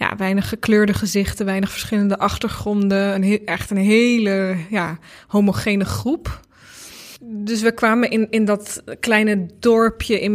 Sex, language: female, Dutch